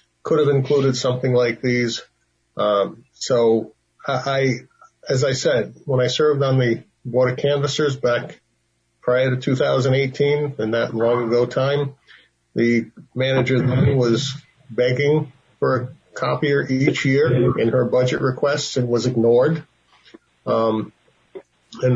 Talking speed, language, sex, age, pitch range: 135 wpm, English, male, 40-59, 120-140 Hz